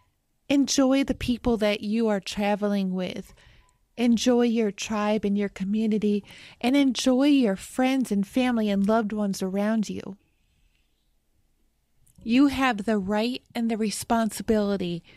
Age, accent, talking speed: 30-49, American, 125 wpm